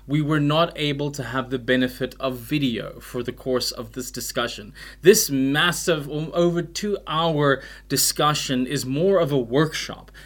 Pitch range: 130-170 Hz